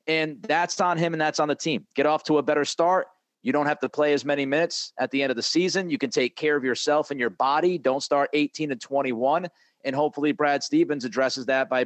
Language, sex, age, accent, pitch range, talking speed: English, male, 30-49, American, 130-155 Hz, 255 wpm